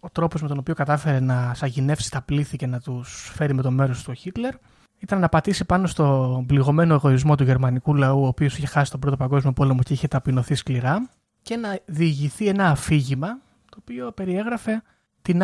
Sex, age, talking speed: male, 20-39, 200 wpm